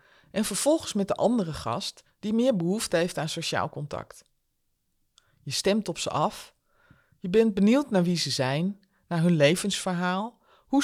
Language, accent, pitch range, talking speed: Dutch, Dutch, 160-210 Hz, 160 wpm